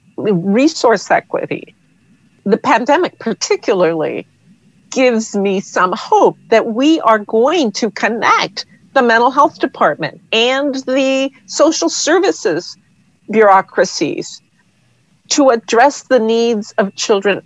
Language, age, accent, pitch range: English, 50-69, American, 185-250 Hz